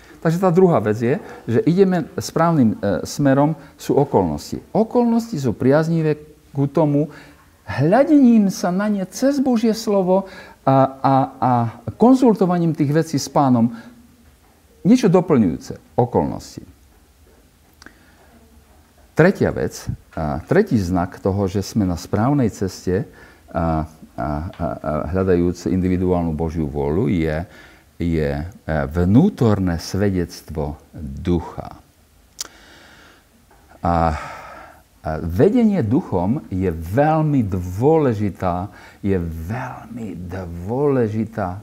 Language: Slovak